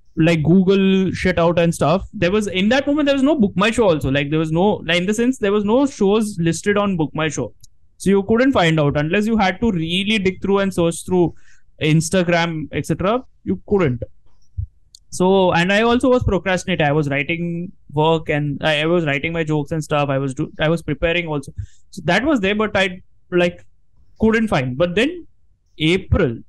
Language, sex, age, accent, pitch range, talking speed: English, male, 20-39, Indian, 140-205 Hz, 210 wpm